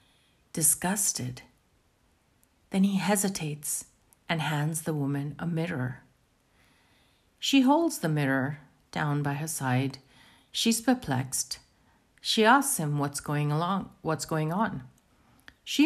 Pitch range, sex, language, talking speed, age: 140-215 Hz, female, English, 105 wpm, 50-69